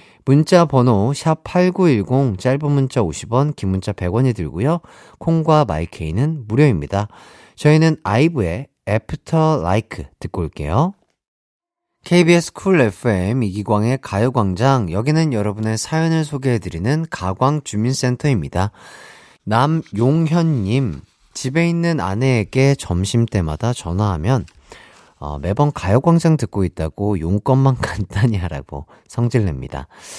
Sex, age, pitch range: male, 40-59, 100-145 Hz